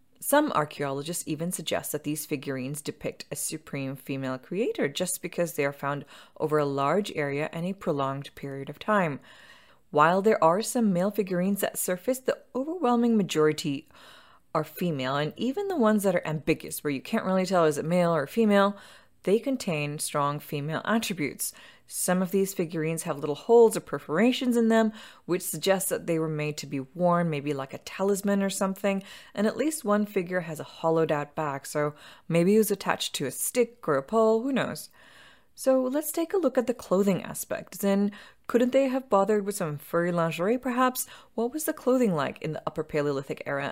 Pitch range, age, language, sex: 150-215 Hz, 20-39, English, female